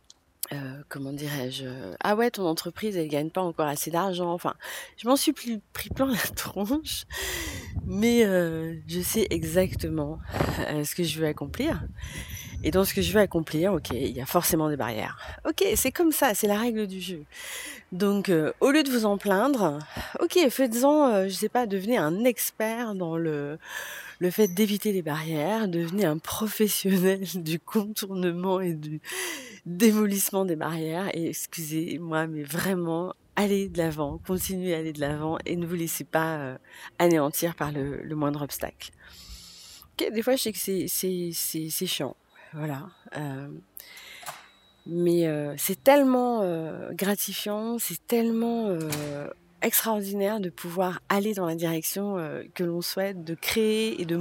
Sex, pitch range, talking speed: female, 155-205 Hz, 165 wpm